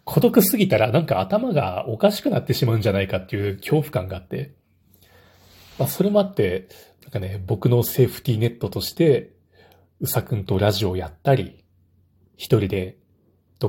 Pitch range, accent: 95-130 Hz, native